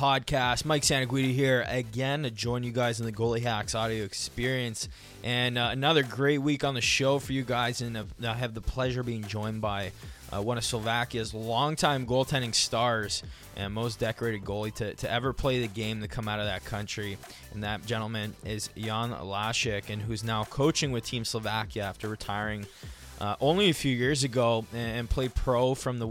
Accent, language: American, English